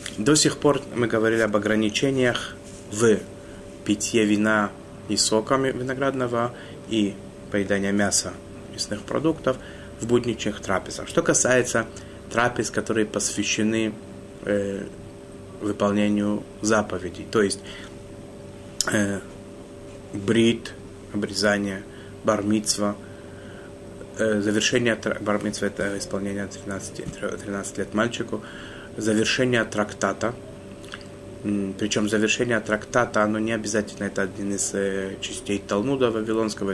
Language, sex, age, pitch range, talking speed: Russian, male, 30-49, 100-110 Hz, 95 wpm